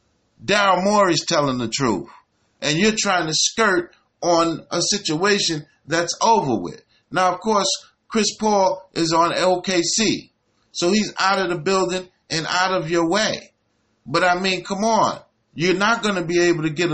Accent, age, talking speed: American, 30-49, 170 wpm